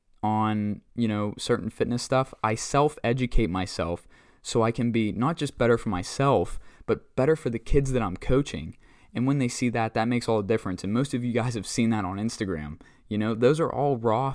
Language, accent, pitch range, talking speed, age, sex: English, American, 105-130 Hz, 220 wpm, 20-39, male